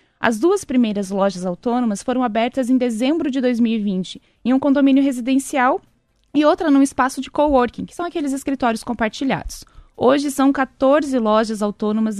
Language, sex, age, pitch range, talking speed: Portuguese, female, 20-39, 225-275 Hz, 150 wpm